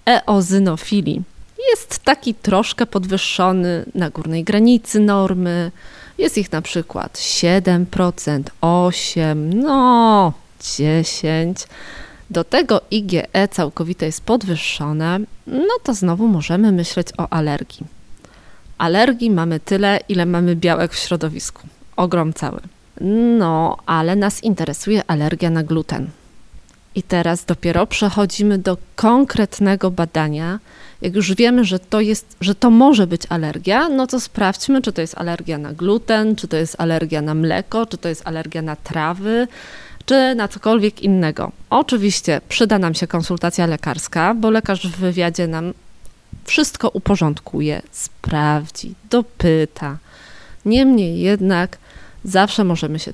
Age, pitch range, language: 20-39, 165-210 Hz, Polish